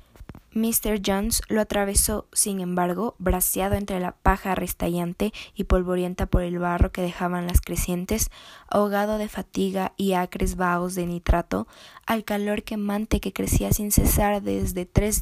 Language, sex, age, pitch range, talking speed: Spanish, female, 20-39, 180-205 Hz, 145 wpm